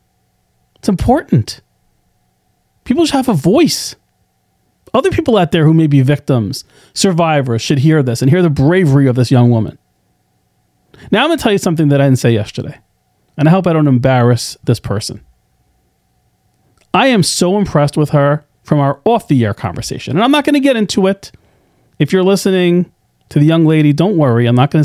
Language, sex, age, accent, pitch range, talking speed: English, male, 40-59, American, 130-185 Hz, 190 wpm